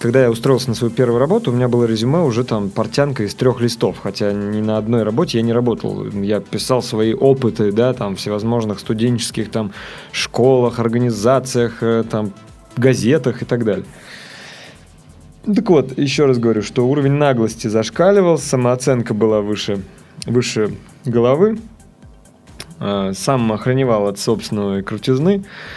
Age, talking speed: 20-39, 140 wpm